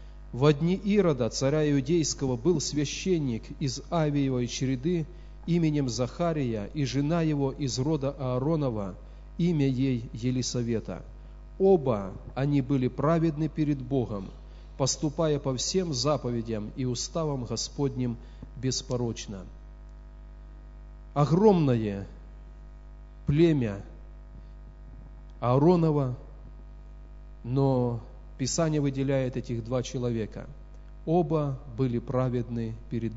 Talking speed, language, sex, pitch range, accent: 85 wpm, Russian, male, 120-150 Hz, native